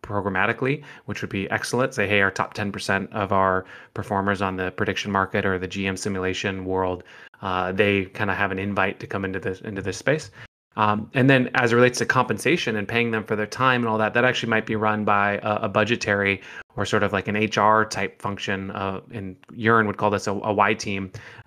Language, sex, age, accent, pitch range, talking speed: English, male, 20-39, American, 100-115 Hz, 225 wpm